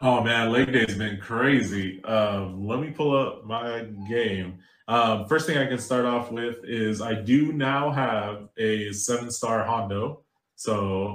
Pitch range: 105-125 Hz